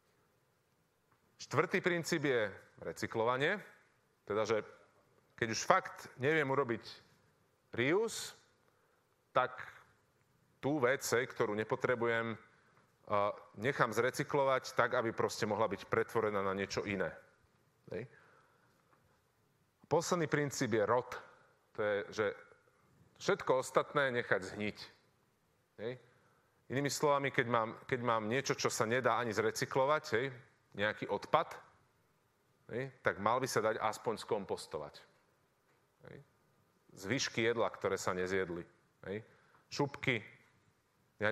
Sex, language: male, Slovak